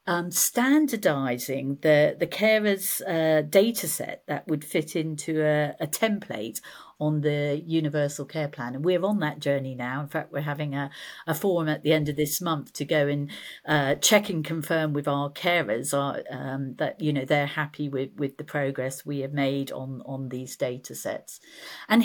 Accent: British